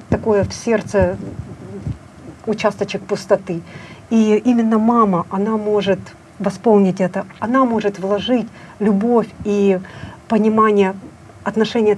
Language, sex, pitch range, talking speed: Russian, female, 195-225 Hz, 95 wpm